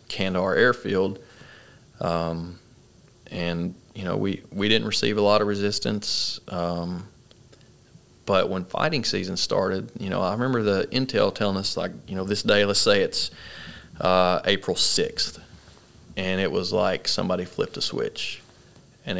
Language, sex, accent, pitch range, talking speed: English, male, American, 95-110 Hz, 150 wpm